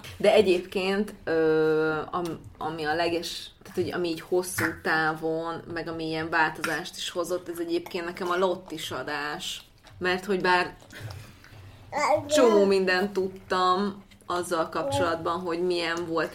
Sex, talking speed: female, 130 wpm